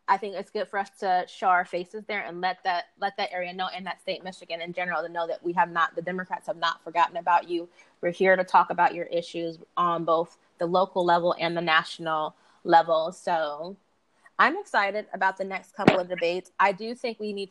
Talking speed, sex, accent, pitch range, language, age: 230 wpm, female, American, 175-205 Hz, English, 20-39